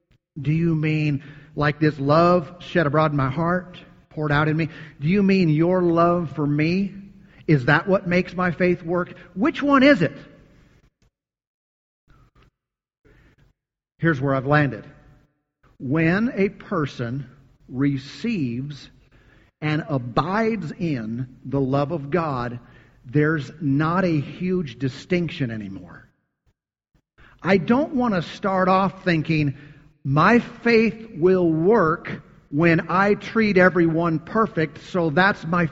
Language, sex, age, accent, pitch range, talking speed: English, male, 50-69, American, 145-190 Hz, 125 wpm